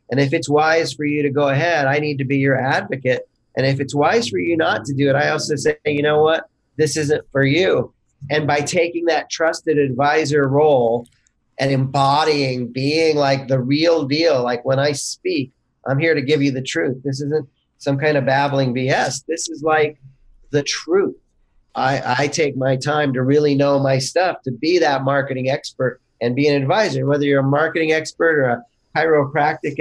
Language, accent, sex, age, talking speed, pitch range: English, American, male, 40-59, 200 wpm, 135-155 Hz